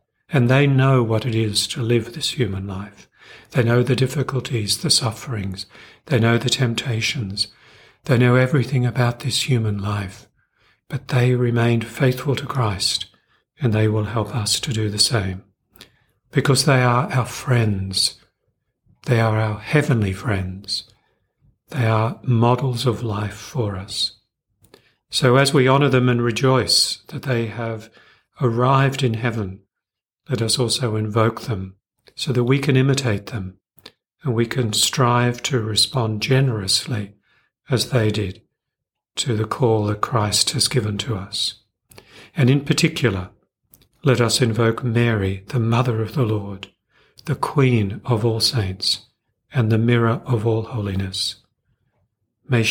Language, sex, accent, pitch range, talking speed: English, male, British, 105-125 Hz, 145 wpm